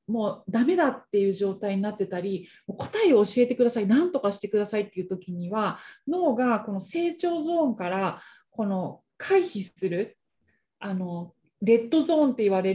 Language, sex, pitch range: Japanese, female, 200-280 Hz